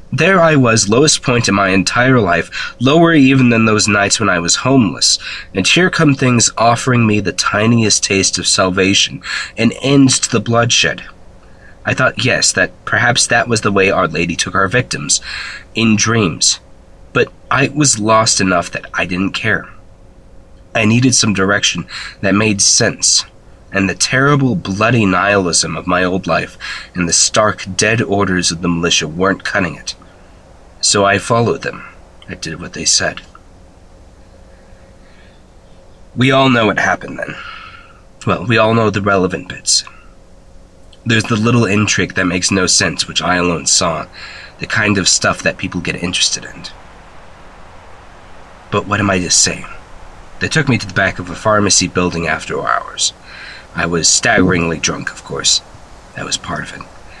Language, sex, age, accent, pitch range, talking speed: English, male, 20-39, American, 90-115 Hz, 165 wpm